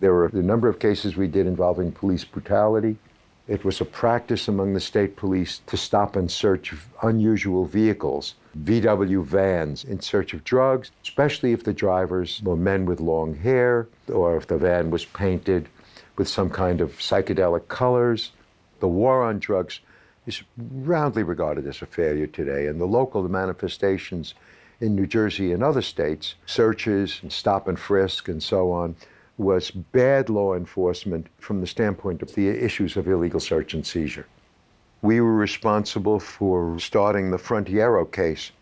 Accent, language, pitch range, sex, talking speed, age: American, English, 90-110 Hz, male, 165 wpm, 60-79